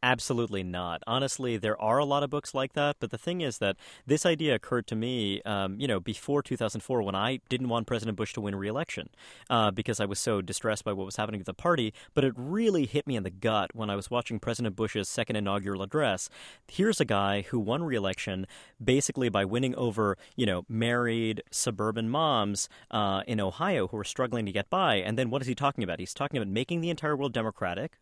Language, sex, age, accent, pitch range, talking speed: English, male, 30-49, American, 105-135 Hz, 225 wpm